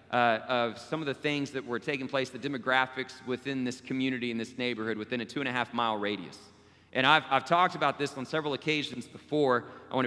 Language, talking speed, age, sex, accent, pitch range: English, 225 wpm, 30-49, male, American, 120-165 Hz